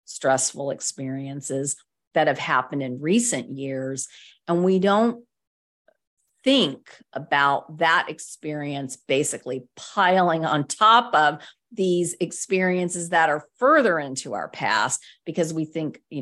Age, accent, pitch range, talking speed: 50-69, American, 140-185 Hz, 120 wpm